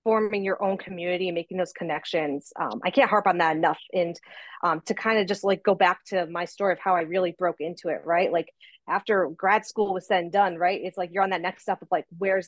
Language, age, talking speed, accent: English, 30-49, 260 wpm, American